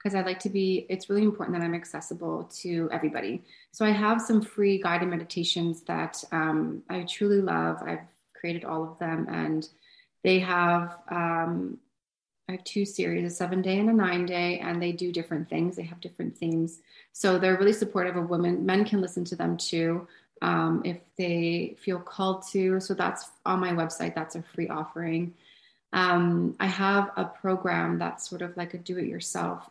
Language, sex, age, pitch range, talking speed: English, female, 30-49, 165-185 Hz, 185 wpm